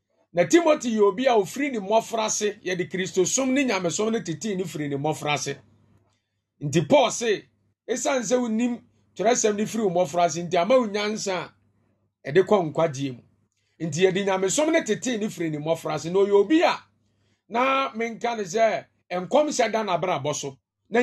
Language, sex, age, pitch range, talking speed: English, male, 40-59, 140-220 Hz, 150 wpm